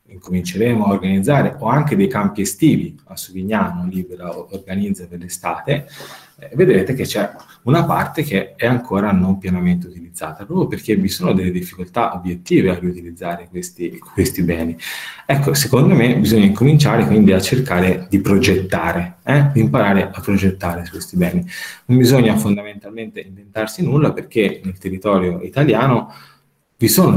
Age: 20-39